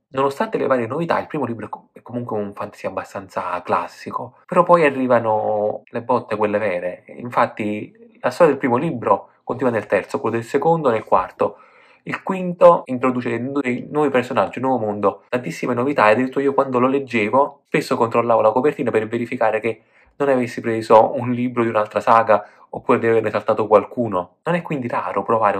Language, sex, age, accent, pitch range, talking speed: Italian, male, 20-39, native, 110-145 Hz, 175 wpm